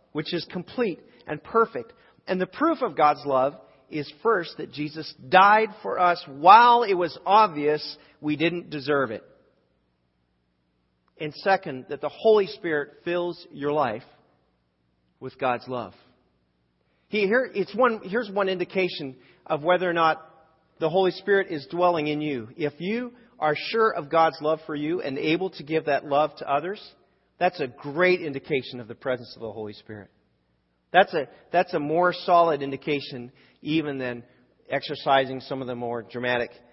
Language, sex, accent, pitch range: English, male, American, 110-170 Hz